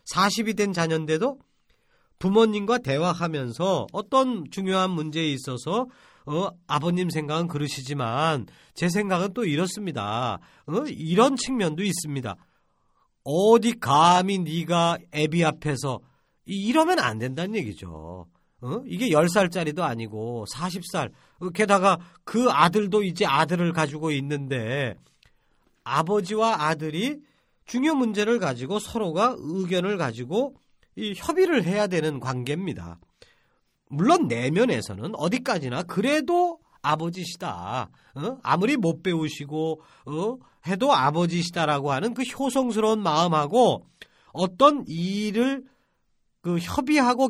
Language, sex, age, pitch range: Korean, male, 40-59, 150-220 Hz